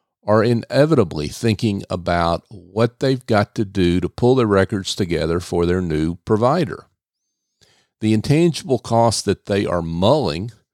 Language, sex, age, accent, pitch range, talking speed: English, male, 50-69, American, 90-115 Hz, 140 wpm